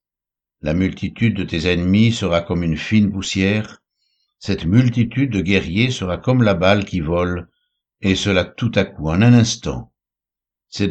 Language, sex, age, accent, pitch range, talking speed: French, male, 60-79, French, 85-105 Hz, 160 wpm